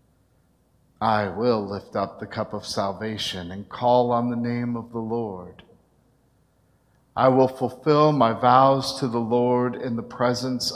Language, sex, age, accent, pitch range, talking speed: English, male, 50-69, American, 105-125 Hz, 150 wpm